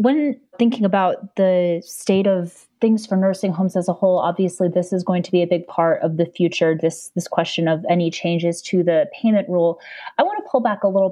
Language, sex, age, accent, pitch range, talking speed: English, female, 30-49, American, 175-200 Hz, 225 wpm